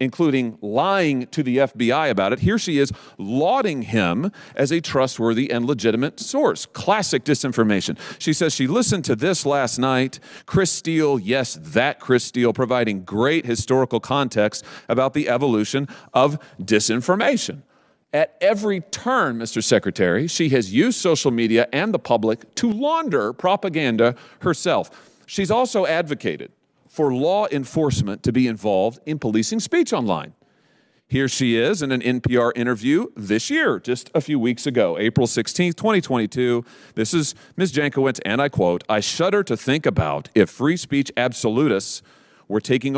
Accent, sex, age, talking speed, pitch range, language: American, male, 40-59, 150 wpm, 120-160 Hz, English